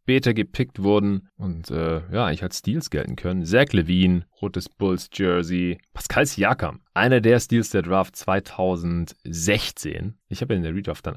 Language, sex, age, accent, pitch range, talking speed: German, male, 30-49, German, 80-105 Hz, 160 wpm